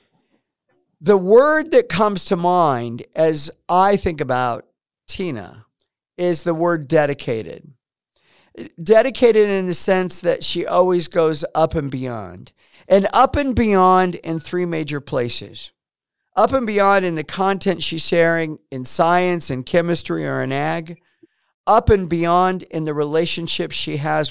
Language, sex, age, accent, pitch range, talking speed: English, male, 50-69, American, 135-180 Hz, 140 wpm